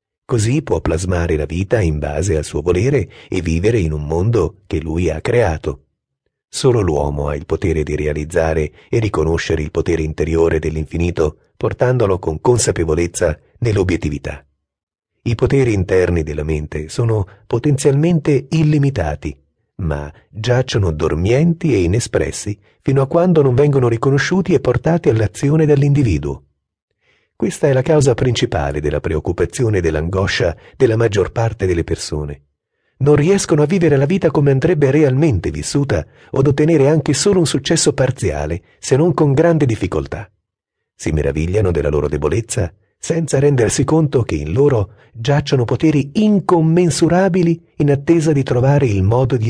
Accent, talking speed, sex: native, 140 wpm, male